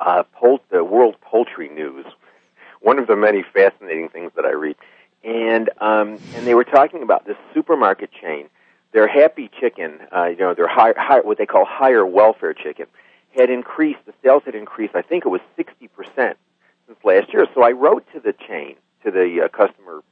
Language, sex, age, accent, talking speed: English, male, 50-69, American, 195 wpm